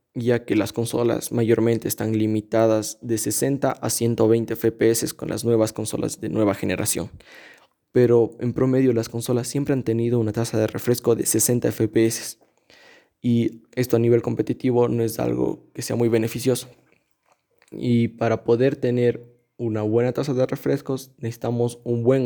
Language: Spanish